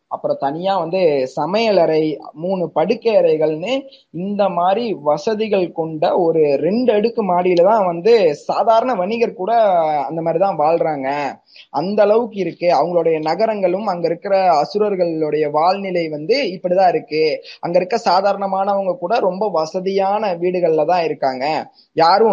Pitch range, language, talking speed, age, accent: 150-195 Hz, Tamil, 120 wpm, 20-39, native